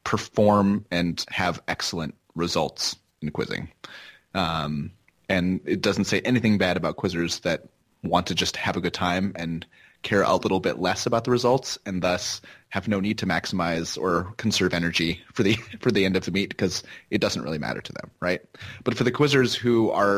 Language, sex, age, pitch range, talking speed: English, male, 30-49, 90-105 Hz, 195 wpm